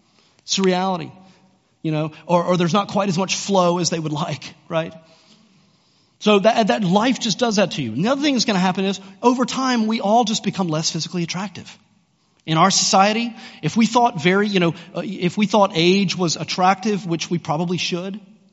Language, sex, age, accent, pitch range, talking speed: English, male, 40-59, American, 155-205 Hz, 205 wpm